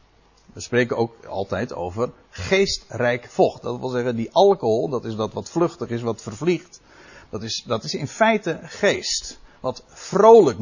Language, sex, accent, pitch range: Dutch, male, Dutch, 115-185 Hz